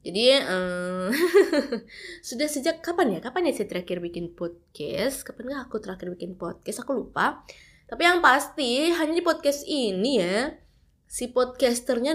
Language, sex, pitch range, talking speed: Indonesian, female, 215-305 Hz, 145 wpm